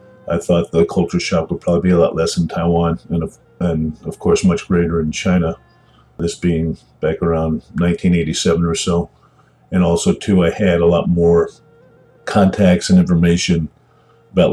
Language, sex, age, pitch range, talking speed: English, male, 50-69, 80-90 Hz, 170 wpm